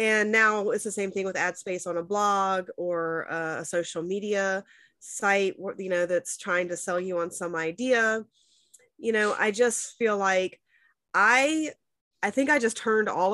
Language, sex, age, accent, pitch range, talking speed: English, female, 20-39, American, 180-220 Hz, 180 wpm